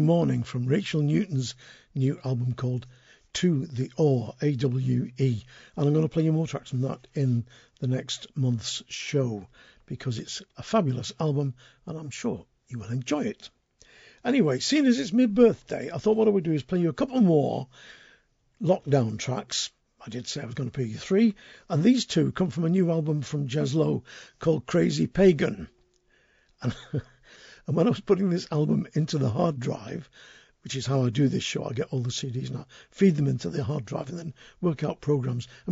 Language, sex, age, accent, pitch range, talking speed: English, male, 50-69, British, 130-170 Hz, 200 wpm